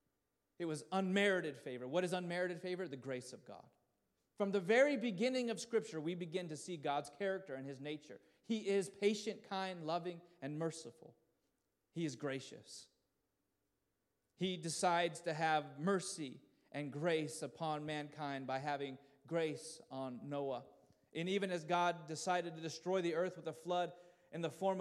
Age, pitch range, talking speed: 30-49, 150-195 Hz, 160 wpm